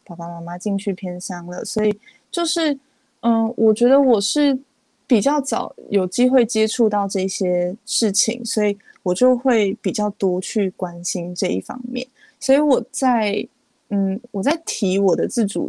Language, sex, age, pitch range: Chinese, female, 20-39, 190-245 Hz